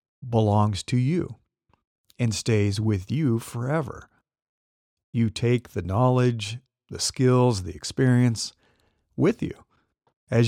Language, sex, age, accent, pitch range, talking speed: English, male, 50-69, American, 105-125 Hz, 110 wpm